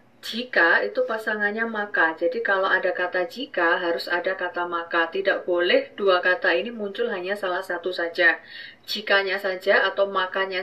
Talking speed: 150 wpm